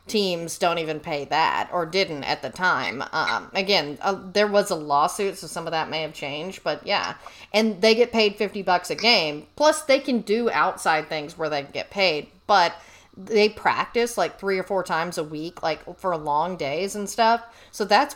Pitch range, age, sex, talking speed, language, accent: 170-220 Hz, 30-49, female, 205 wpm, English, American